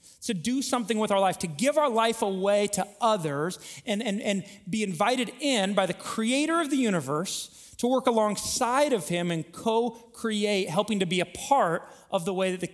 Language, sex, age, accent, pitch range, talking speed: English, male, 30-49, American, 165-235 Hz, 200 wpm